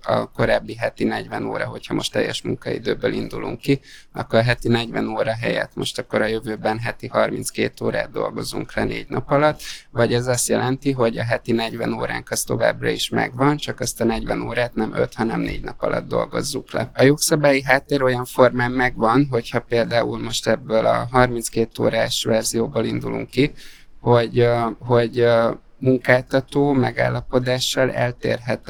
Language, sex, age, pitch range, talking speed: Hungarian, male, 20-39, 115-130 Hz, 160 wpm